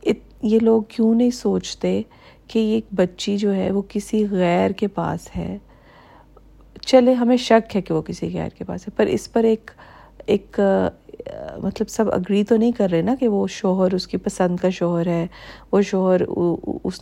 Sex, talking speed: female, 185 wpm